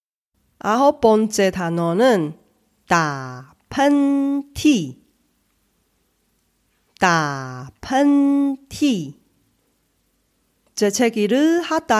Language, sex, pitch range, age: Korean, female, 195-285 Hz, 40-59